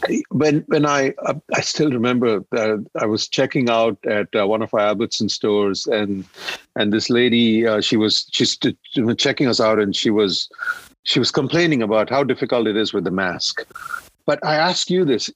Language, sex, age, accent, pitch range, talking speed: English, male, 50-69, Indian, 110-155 Hz, 195 wpm